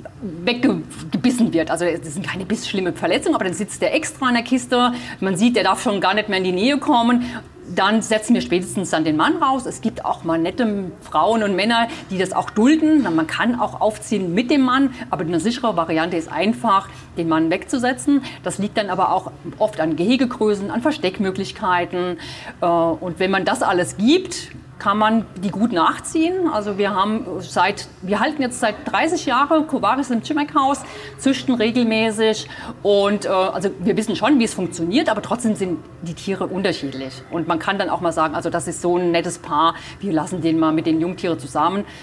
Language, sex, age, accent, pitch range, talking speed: German, female, 40-59, German, 165-235 Hz, 195 wpm